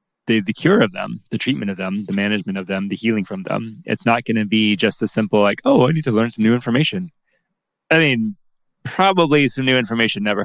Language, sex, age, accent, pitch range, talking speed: English, male, 20-39, American, 100-115 Hz, 235 wpm